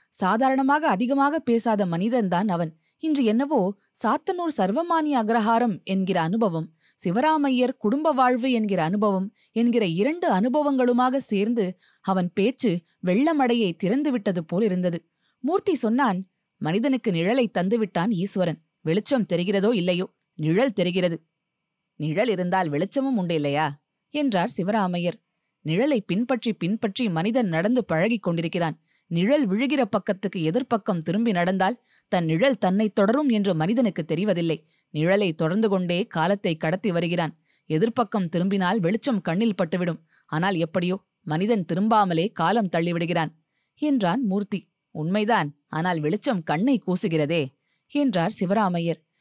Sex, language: female, Tamil